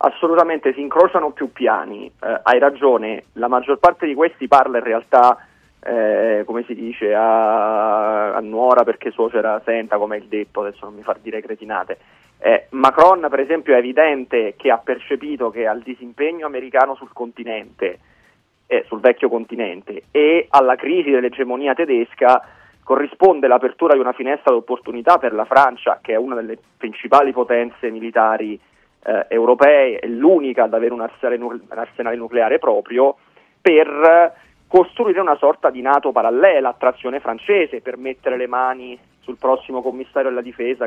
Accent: native